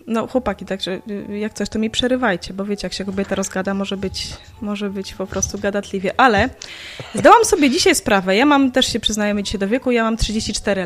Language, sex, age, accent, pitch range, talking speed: Polish, female, 20-39, native, 195-245 Hz, 205 wpm